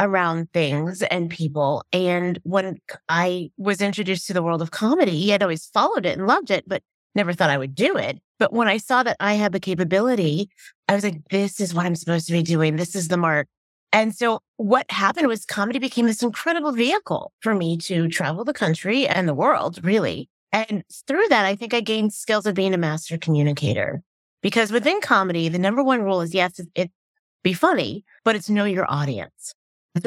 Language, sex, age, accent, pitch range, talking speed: English, female, 30-49, American, 175-235 Hz, 210 wpm